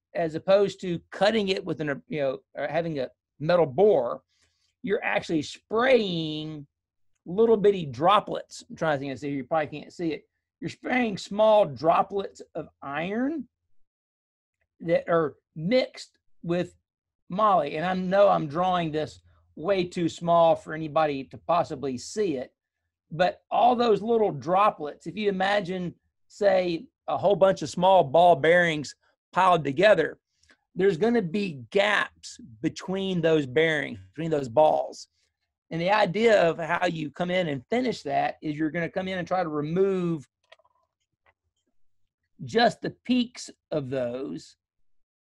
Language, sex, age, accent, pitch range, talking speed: English, male, 40-59, American, 140-195 Hz, 145 wpm